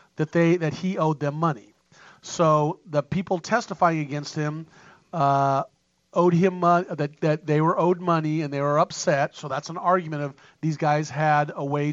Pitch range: 145-175 Hz